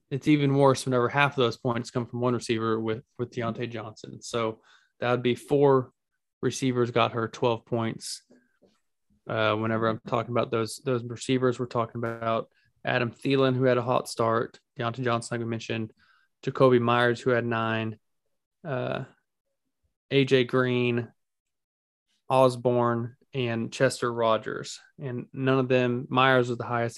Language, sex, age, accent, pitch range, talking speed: English, male, 20-39, American, 115-130 Hz, 155 wpm